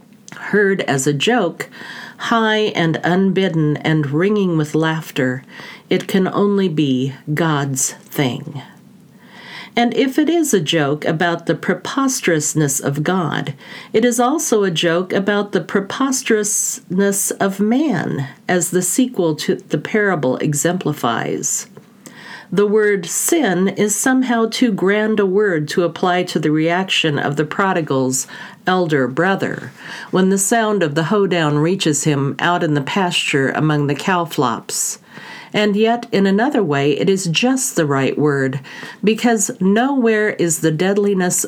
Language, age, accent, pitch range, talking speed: English, 50-69, American, 155-210 Hz, 140 wpm